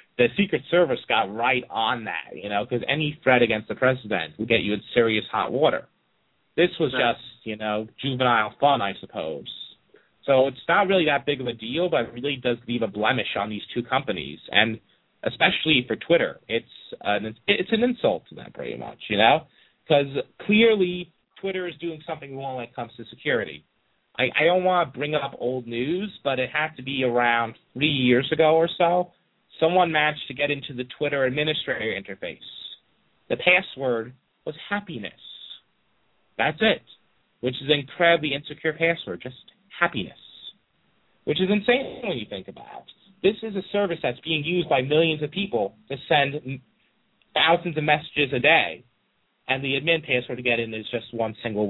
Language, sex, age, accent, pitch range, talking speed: English, male, 30-49, American, 120-165 Hz, 180 wpm